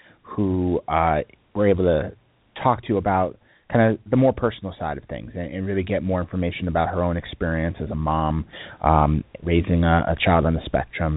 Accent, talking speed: American, 200 wpm